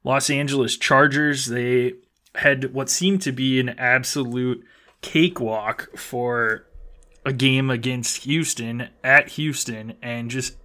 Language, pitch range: English, 120-140 Hz